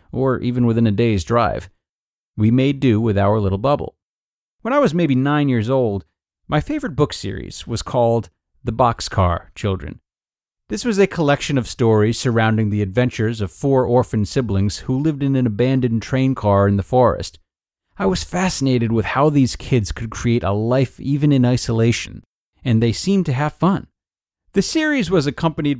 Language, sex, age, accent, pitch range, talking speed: English, male, 40-59, American, 110-155 Hz, 175 wpm